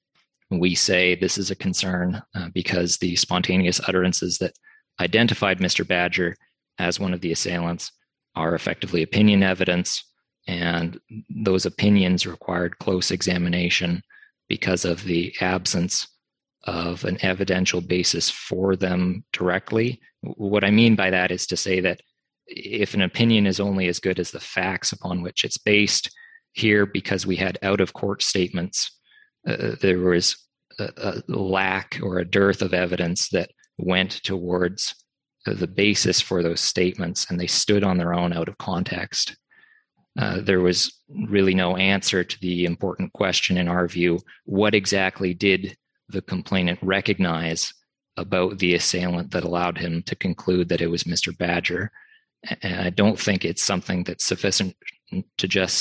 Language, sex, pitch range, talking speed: English, male, 90-95 Hz, 155 wpm